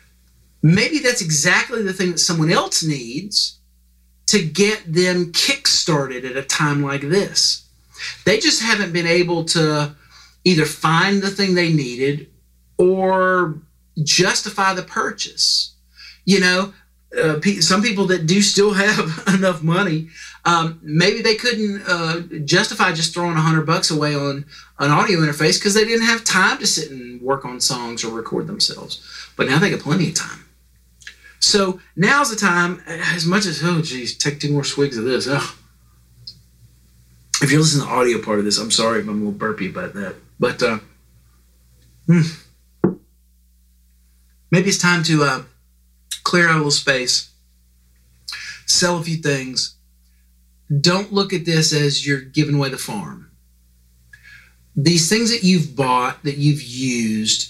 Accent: American